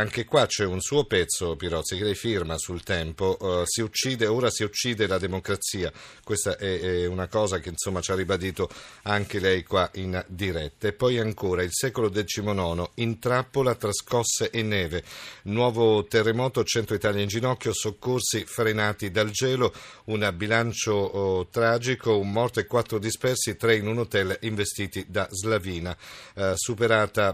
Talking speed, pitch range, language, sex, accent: 160 wpm, 95-115 Hz, Italian, male, native